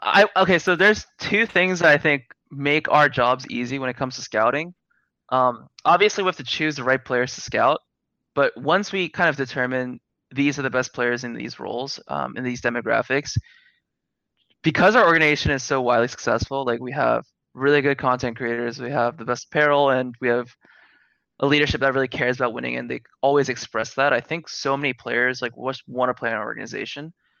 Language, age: English, 20-39